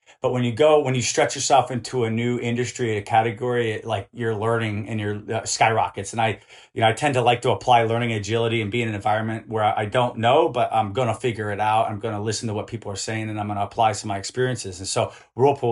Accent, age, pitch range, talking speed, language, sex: American, 30-49, 110-130 Hz, 265 wpm, English, male